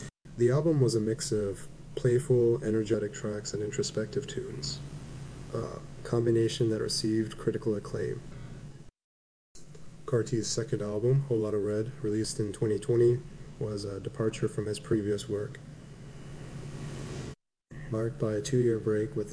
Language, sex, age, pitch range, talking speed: English, male, 30-49, 110-135 Hz, 125 wpm